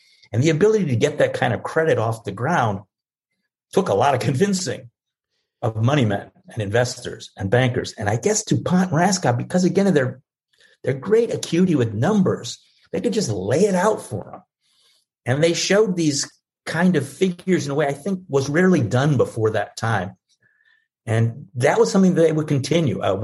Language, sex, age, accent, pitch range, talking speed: English, male, 50-69, American, 120-175 Hz, 190 wpm